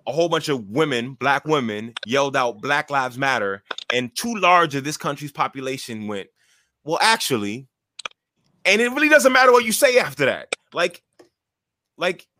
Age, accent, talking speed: 20-39, American, 165 wpm